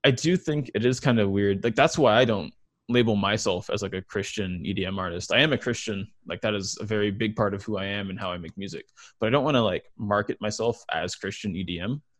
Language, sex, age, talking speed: English, male, 20-39, 255 wpm